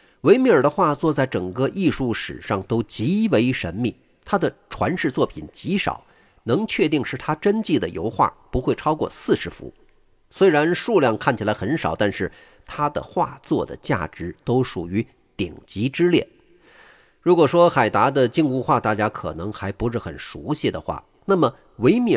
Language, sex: Chinese, male